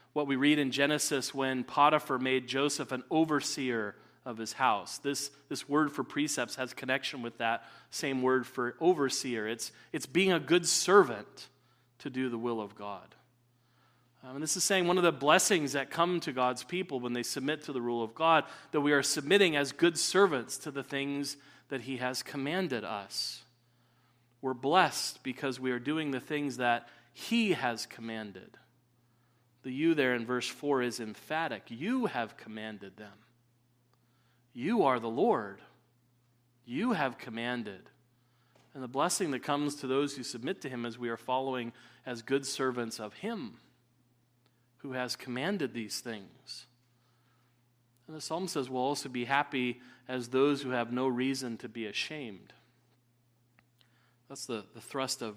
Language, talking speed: English, 165 wpm